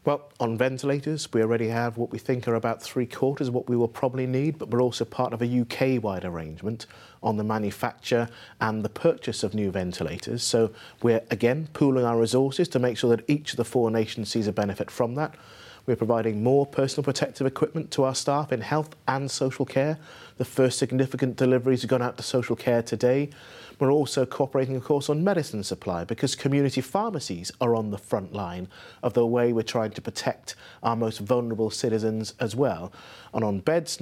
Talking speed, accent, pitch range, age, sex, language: 200 wpm, British, 115-140 Hz, 30-49, male, English